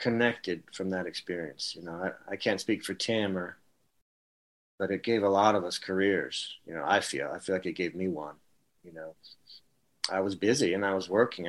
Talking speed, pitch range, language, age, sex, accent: 215 wpm, 95-105 Hz, English, 40-59, male, American